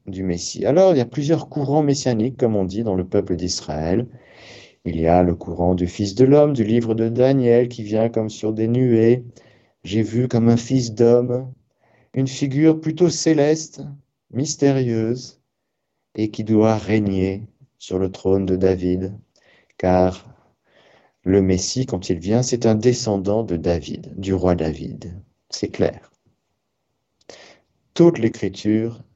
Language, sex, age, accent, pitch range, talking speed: French, male, 50-69, French, 95-120 Hz, 150 wpm